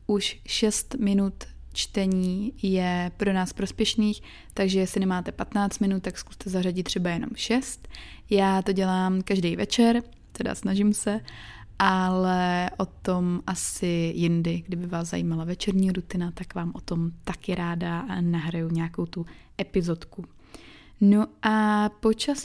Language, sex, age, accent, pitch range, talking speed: Czech, female, 20-39, native, 180-205 Hz, 135 wpm